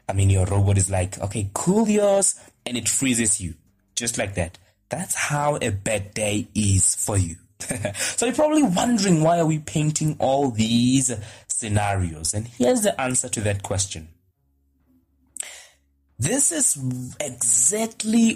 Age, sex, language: 20-39, male, English